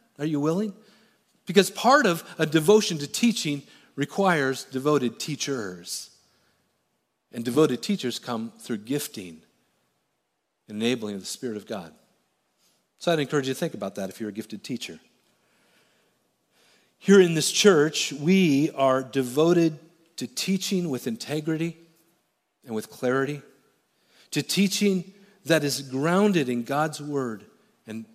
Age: 40-59